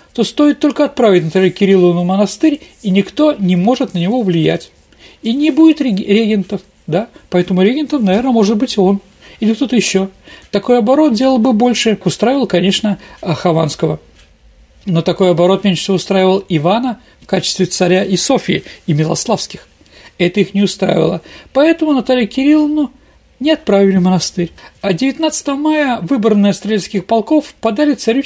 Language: Russian